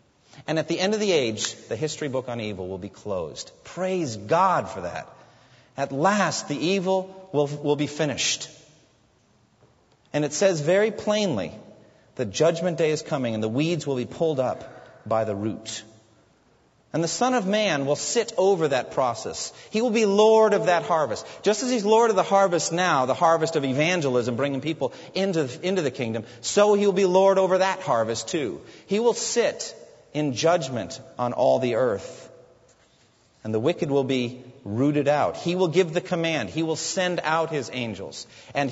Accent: American